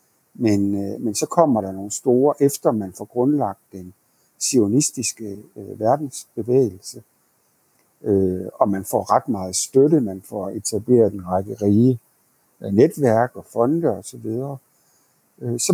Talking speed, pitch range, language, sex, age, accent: 135 wpm, 100-130 Hz, Danish, male, 60-79, native